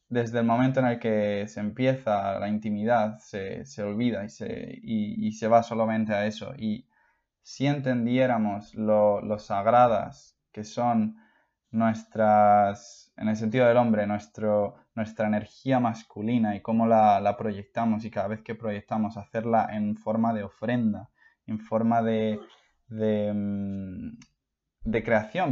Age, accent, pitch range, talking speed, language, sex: 20-39, Spanish, 105-120 Hz, 145 wpm, Spanish, male